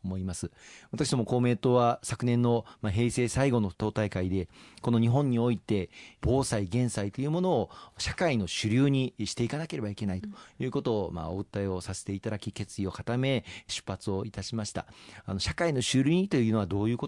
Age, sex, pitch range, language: 40-59, male, 100-145 Hz, Japanese